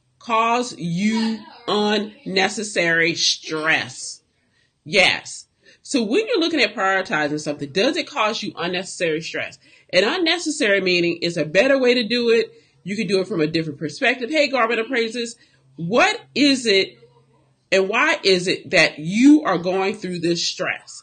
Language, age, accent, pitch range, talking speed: English, 40-59, American, 165-265 Hz, 150 wpm